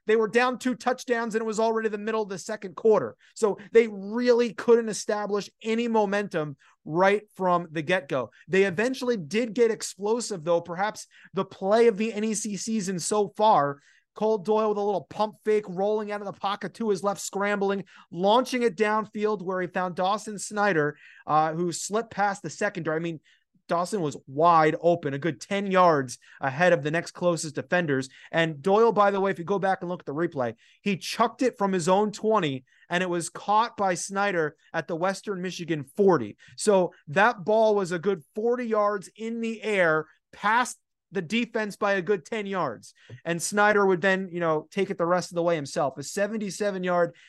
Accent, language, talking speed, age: American, English, 195 wpm, 30-49